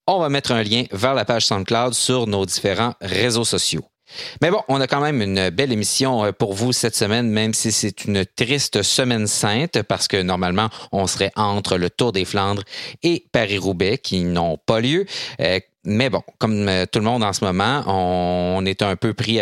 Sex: male